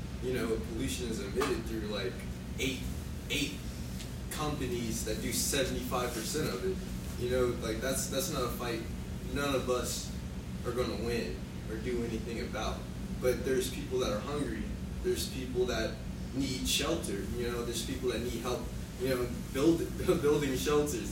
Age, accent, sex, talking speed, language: 20-39, American, male, 170 wpm, English